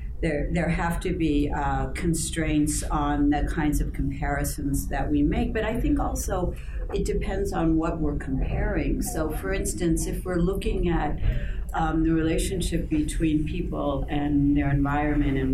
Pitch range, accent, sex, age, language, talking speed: 145-165 Hz, American, female, 60-79, English, 160 wpm